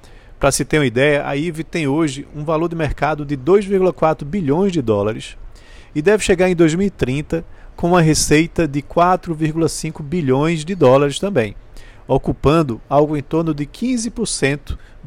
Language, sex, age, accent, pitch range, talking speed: Portuguese, male, 40-59, Brazilian, 130-170 Hz, 150 wpm